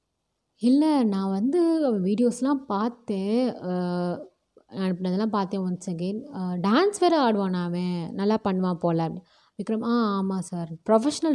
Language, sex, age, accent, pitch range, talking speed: Tamil, female, 20-39, native, 180-245 Hz, 120 wpm